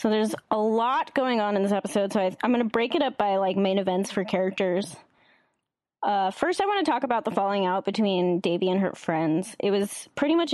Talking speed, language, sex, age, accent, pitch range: 235 wpm, English, female, 10-29, American, 185-230 Hz